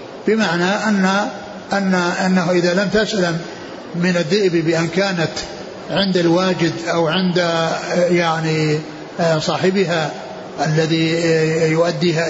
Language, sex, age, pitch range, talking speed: Arabic, male, 60-79, 170-205 Hz, 95 wpm